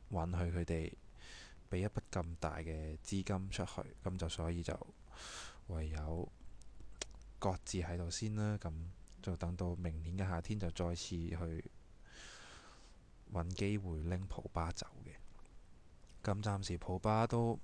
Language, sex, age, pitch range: Chinese, male, 20-39, 85-100 Hz